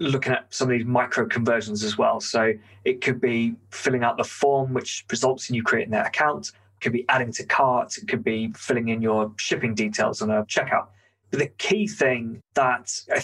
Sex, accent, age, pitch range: male, British, 20-39, 115-145 Hz